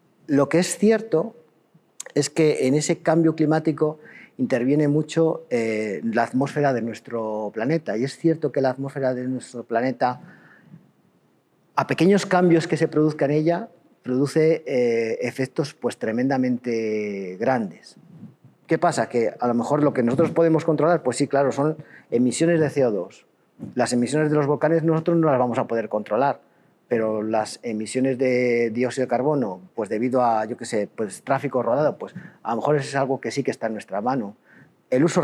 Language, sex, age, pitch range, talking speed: Spanish, male, 40-59, 120-165 Hz, 175 wpm